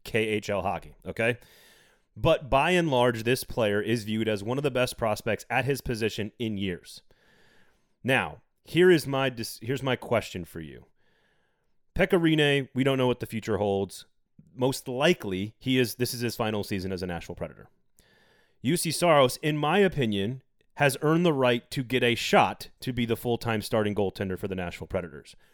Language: English